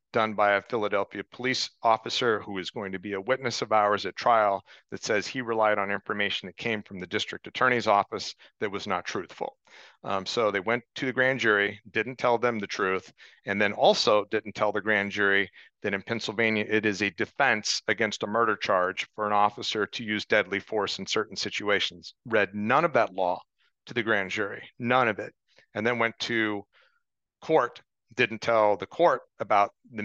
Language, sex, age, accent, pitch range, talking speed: English, male, 40-59, American, 100-115 Hz, 200 wpm